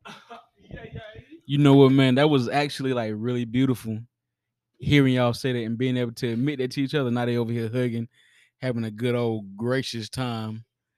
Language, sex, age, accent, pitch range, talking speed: English, male, 20-39, American, 115-130 Hz, 185 wpm